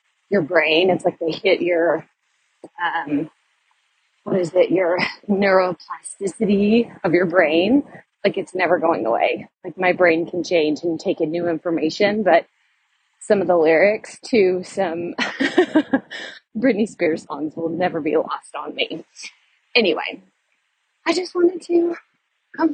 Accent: American